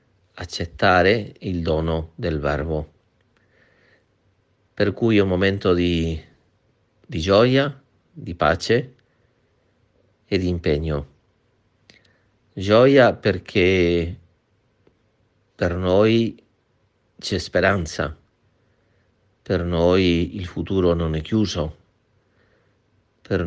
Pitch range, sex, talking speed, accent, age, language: 85-110 Hz, male, 80 wpm, native, 50-69, Italian